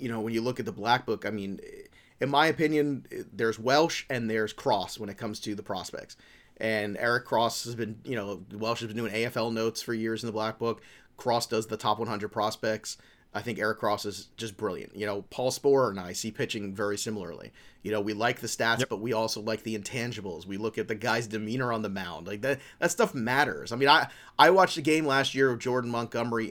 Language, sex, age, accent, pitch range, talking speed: English, male, 30-49, American, 105-125 Hz, 240 wpm